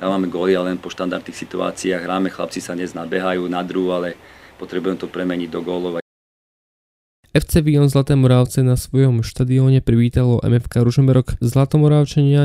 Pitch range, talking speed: 115-140 Hz, 150 wpm